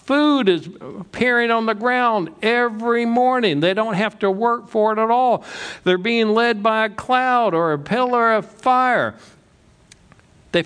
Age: 60-79